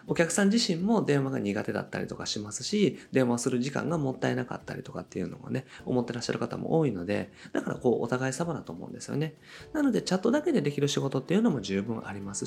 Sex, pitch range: male, 130-210 Hz